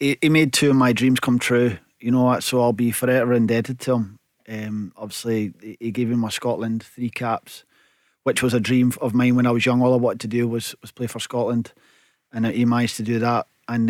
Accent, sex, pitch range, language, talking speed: British, male, 115-130 Hz, English, 230 wpm